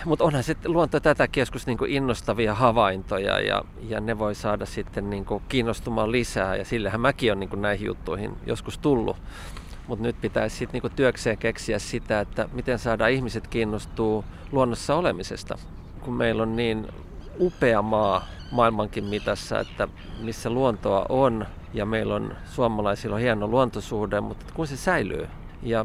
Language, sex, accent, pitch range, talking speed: Finnish, male, native, 100-125 Hz, 155 wpm